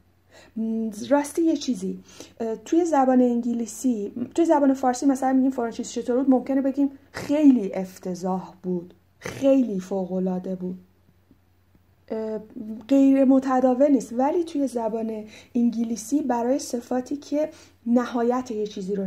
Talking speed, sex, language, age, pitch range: 110 wpm, female, Persian, 30-49, 195-255 Hz